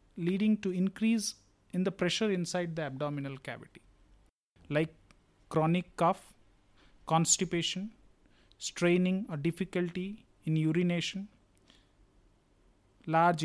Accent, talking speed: Indian, 90 wpm